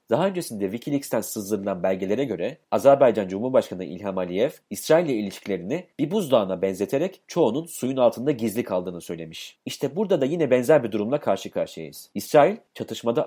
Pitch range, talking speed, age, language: 100-145 Hz, 150 wpm, 40-59, Turkish